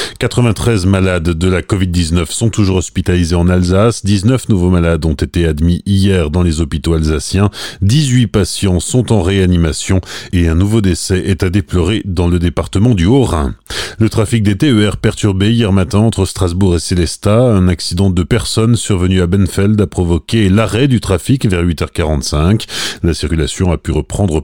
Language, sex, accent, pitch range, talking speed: French, male, French, 90-120 Hz, 165 wpm